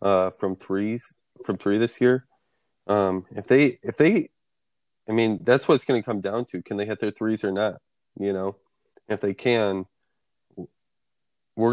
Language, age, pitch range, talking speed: English, 20-39, 95-110 Hz, 180 wpm